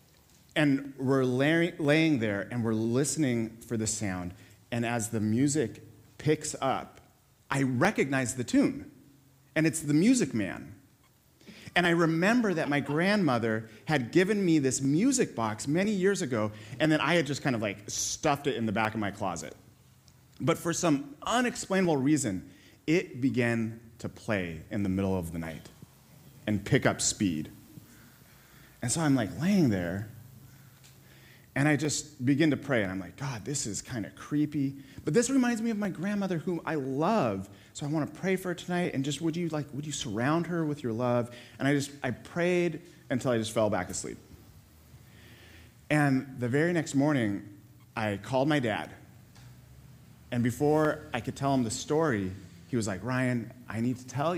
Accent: American